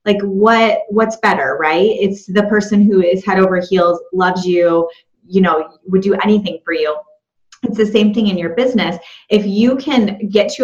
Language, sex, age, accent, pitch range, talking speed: English, female, 20-39, American, 175-215 Hz, 190 wpm